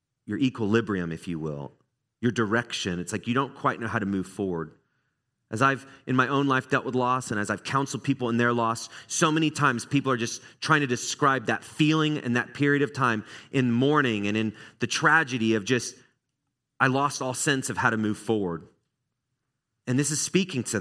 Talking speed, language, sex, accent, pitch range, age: 210 wpm, English, male, American, 110-140 Hz, 30-49